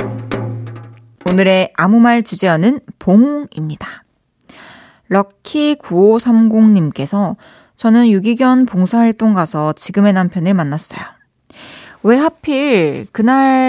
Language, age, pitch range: Korean, 20-39, 175-230 Hz